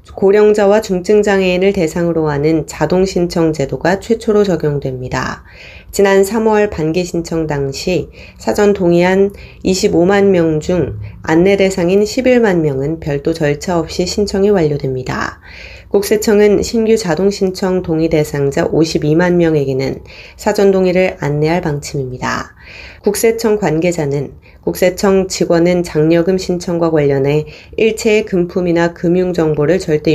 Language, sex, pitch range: Korean, female, 150-195 Hz